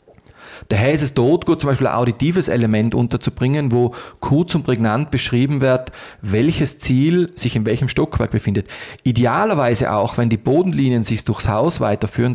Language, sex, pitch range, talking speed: German, male, 110-135 Hz, 160 wpm